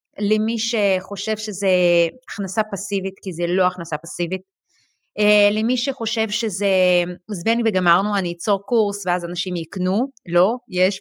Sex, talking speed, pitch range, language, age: female, 130 wpm, 170-220 Hz, Hebrew, 30-49